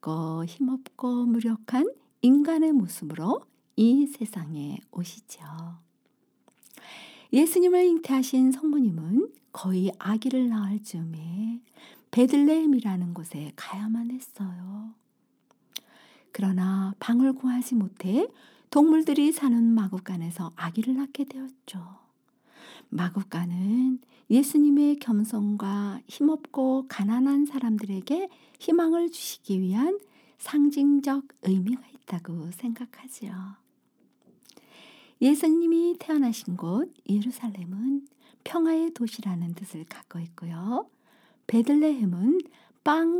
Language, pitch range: Korean, 190-280 Hz